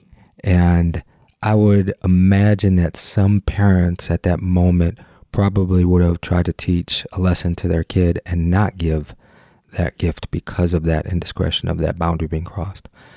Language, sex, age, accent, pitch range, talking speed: English, male, 30-49, American, 85-95 Hz, 160 wpm